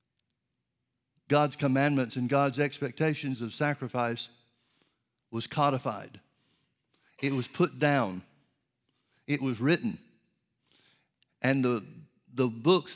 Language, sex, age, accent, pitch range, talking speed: English, male, 60-79, American, 135-165 Hz, 95 wpm